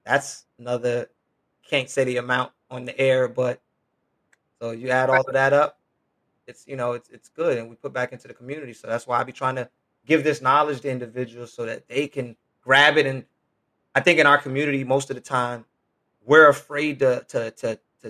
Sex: male